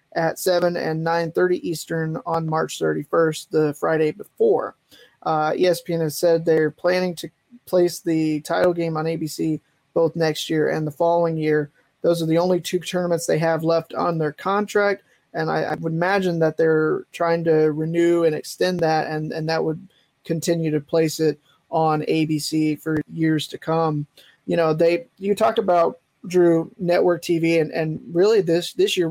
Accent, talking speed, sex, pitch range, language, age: American, 175 wpm, male, 155-175 Hz, English, 20-39